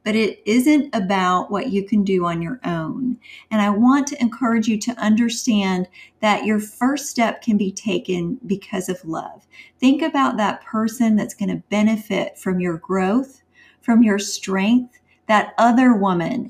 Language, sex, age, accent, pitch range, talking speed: English, female, 40-59, American, 195-240 Hz, 165 wpm